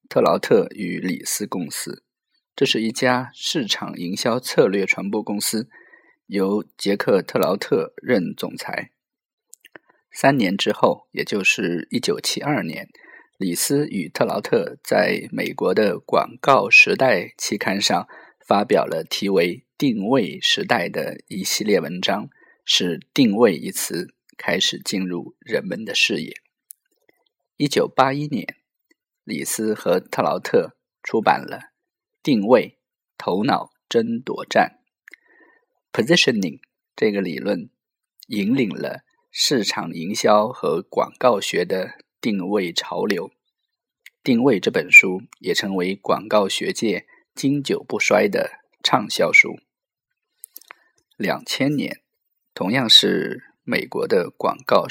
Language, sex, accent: Chinese, male, native